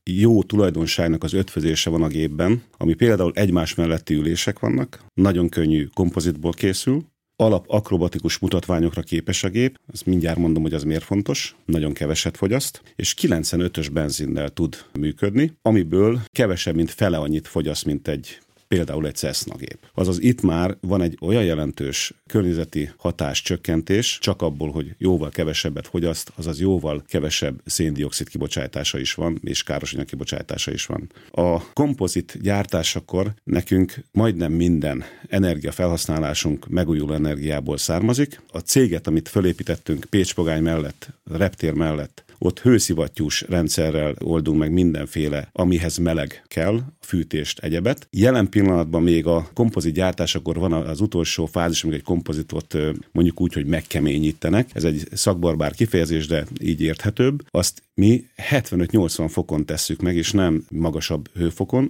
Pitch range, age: 80-95 Hz, 40-59